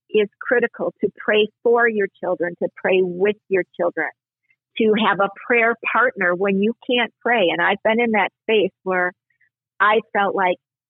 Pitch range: 185-230 Hz